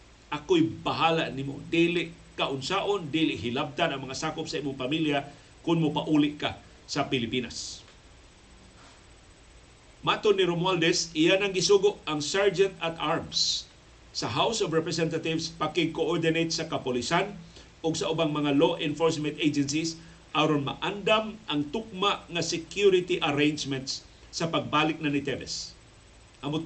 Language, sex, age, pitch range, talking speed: Filipino, male, 50-69, 135-170 Hz, 130 wpm